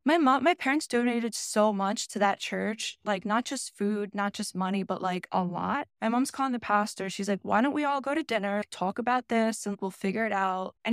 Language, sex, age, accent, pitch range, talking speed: English, female, 10-29, American, 195-235 Hz, 240 wpm